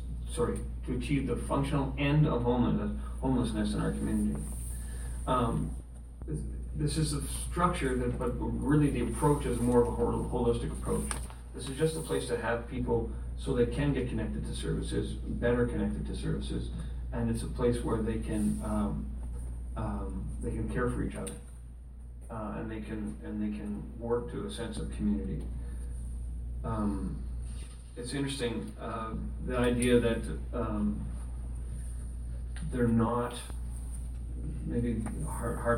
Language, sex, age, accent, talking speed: English, male, 40-59, American, 145 wpm